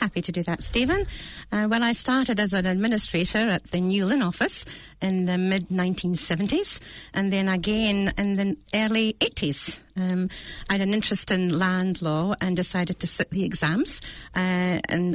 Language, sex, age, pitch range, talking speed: English, female, 40-59, 180-225 Hz, 170 wpm